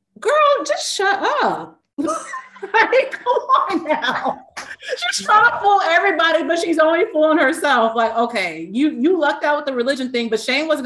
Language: English